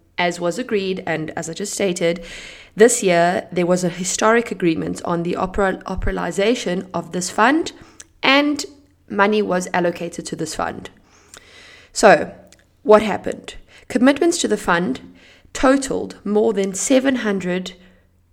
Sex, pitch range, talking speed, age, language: female, 180-215 Hz, 130 wpm, 20-39, Italian